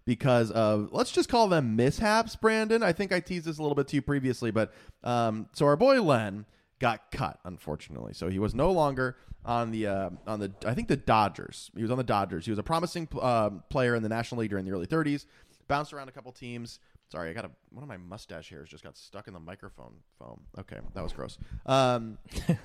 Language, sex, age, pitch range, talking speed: English, male, 20-39, 100-140 Hz, 230 wpm